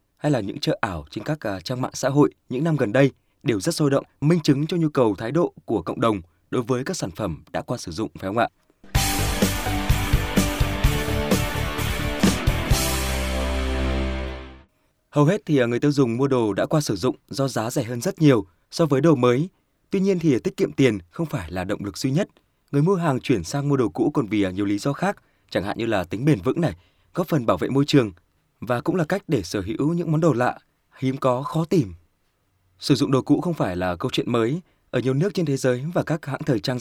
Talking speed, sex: 230 wpm, male